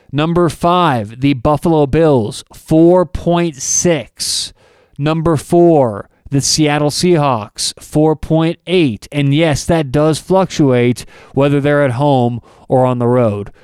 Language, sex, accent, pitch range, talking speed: English, male, American, 140-175 Hz, 110 wpm